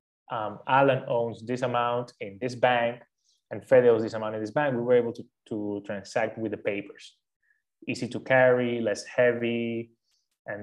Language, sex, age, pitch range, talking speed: English, male, 20-39, 105-130 Hz, 175 wpm